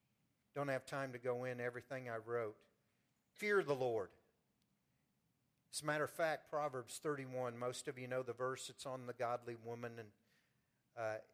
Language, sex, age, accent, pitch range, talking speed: English, male, 50-69, American, 115-135 Hz, 170 wpm